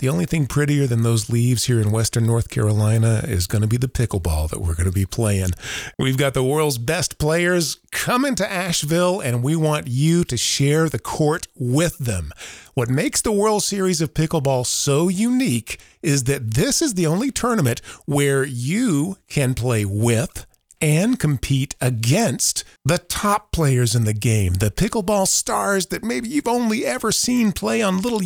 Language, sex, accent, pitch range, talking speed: English, male, American, 120-170 Hz, 180 wpm